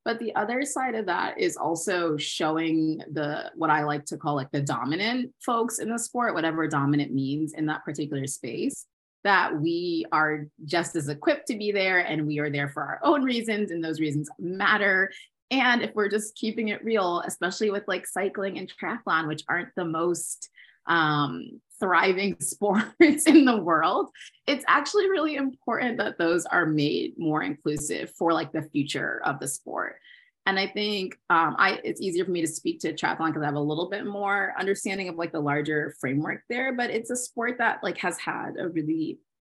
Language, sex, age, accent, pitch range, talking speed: English, female, 20-39, American, 155-225 Hz, 195 wpm